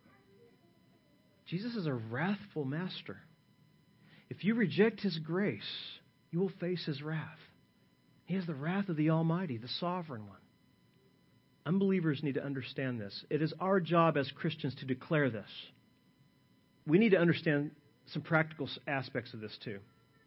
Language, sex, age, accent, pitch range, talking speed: English, male, 40-59, American, 130-180 Hz, 145 wpm